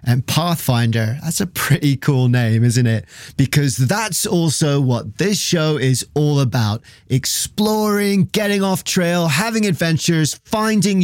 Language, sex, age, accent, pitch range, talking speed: English, male, 30-49, British, 125-180 Hz, 135 wpm